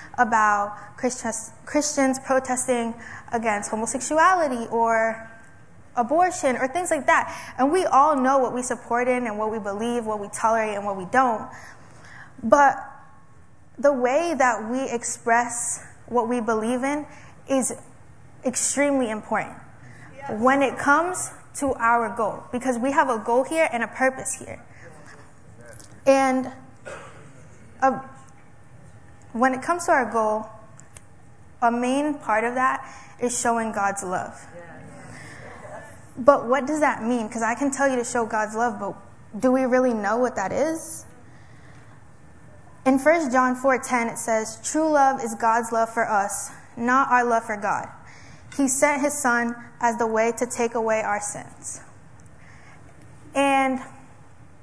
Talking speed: 140 wpm